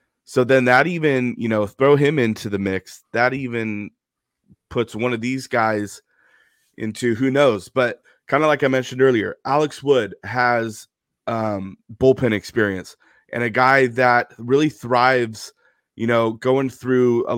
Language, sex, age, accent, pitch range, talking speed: English, male, 30-49, American, 110-130 Hz, 155 wpm